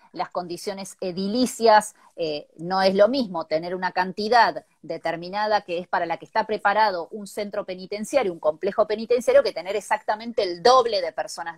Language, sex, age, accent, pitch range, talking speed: Spanish, female, 20-39, Argentinian, 175-255 Hz, 165 wpm